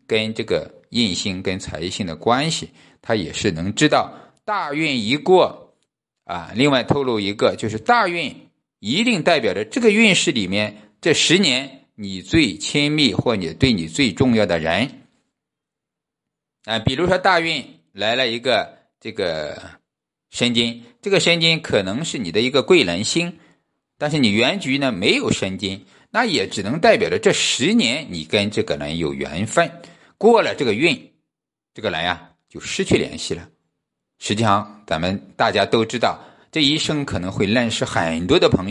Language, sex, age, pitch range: Chinese, male, 50-69, 100-165 Hz